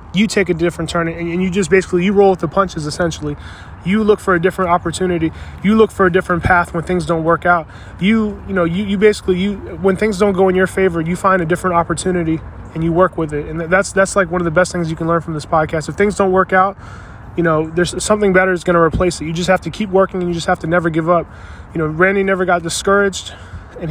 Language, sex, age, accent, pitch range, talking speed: English, male, 20-39, American, 165-190 Hz, 270 wpm